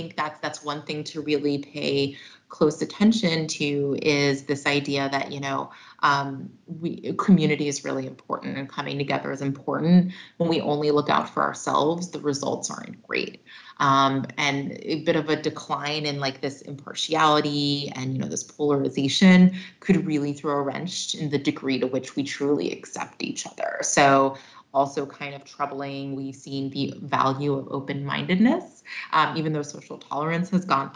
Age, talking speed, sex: 30-49, 165 wpm, female